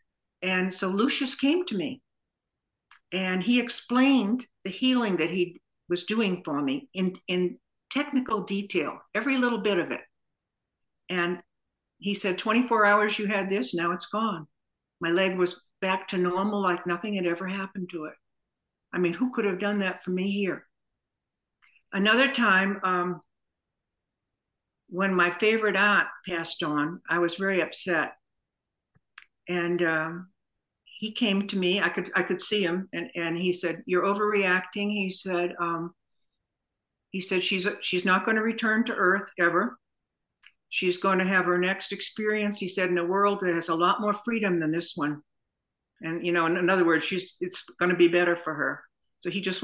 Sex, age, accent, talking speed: female, 60-79, American, 175 wpm